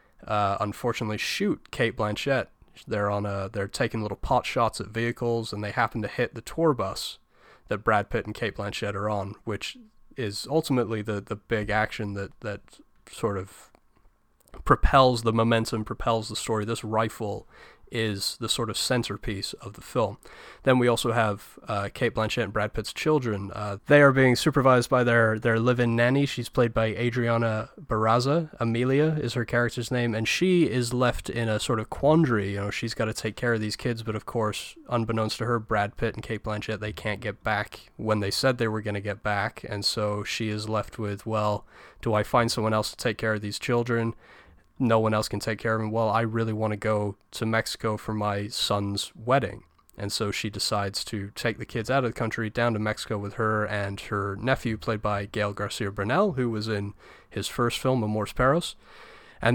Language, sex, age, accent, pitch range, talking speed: English, male, 20-39, American, 105-120 Hz, 205 wpm